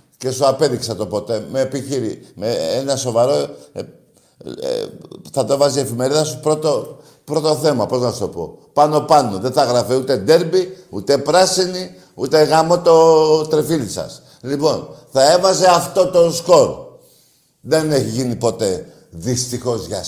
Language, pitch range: Greek, 125-155 Hz